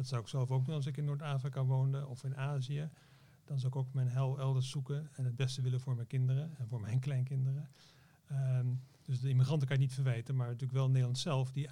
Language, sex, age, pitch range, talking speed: Dutch, male, 40-59, 125-140 Hz, 240 wpm